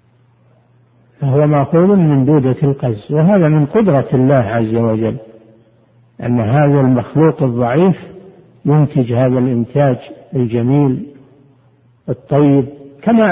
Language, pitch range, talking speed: Arabic, 125-155 Hz, 100 wpm